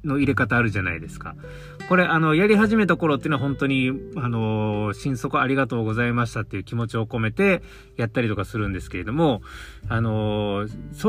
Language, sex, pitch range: Japanese, male, 110-150 Hz